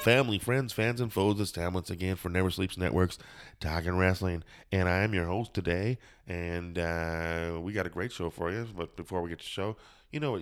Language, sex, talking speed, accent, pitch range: English, male, 230 wpm, American, 85-100 Hz